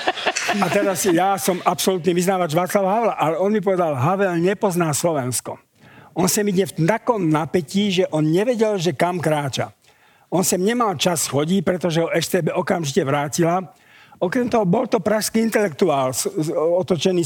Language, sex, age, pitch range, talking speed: Slovak, male, 50-69, 150-195 Hz, 160 wpm